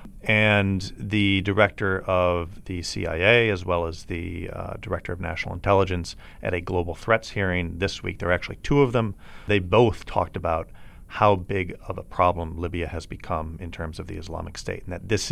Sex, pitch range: male, 85-105 Hz